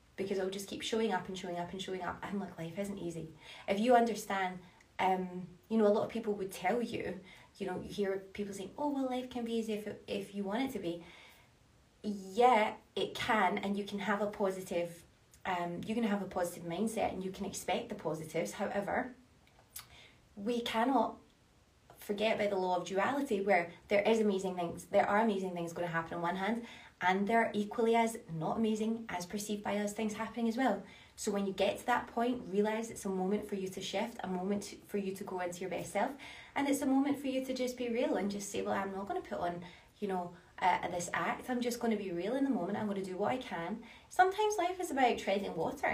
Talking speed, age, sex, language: 235 wpm, 20-39, female, English